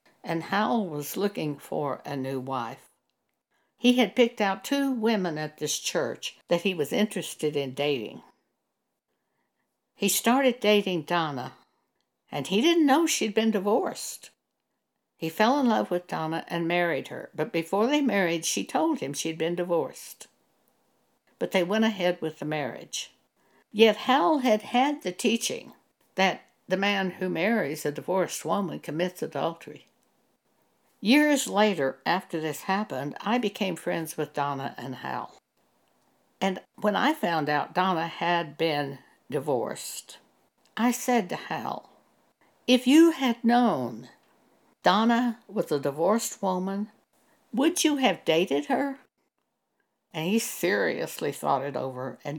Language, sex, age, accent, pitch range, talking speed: English, female, 60-79, American, 160-230 Hz, 140 wpm